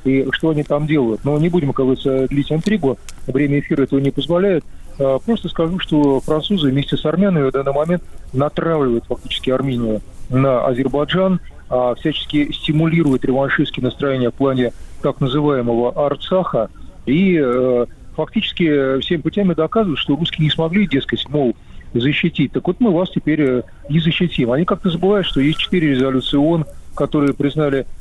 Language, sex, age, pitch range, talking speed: Russian, male, 40-59, 125-155 Hz, 145 wpm